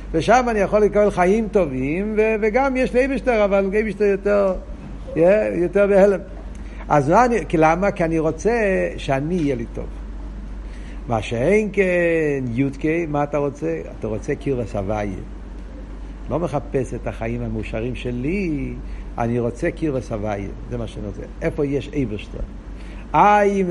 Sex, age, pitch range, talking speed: male, 60-79, 150-230 Hz, 145 wpm